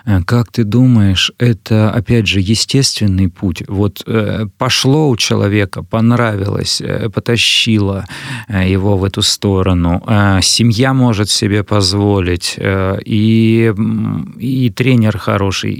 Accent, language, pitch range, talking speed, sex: native, Russian, 95-115 Hz, 100 wpm, male